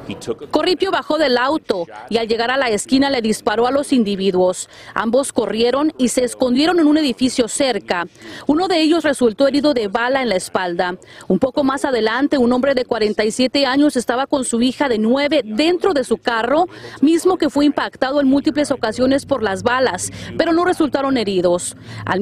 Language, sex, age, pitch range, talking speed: Spanish, female, 40-59, 230-295 Hz, 185 wpm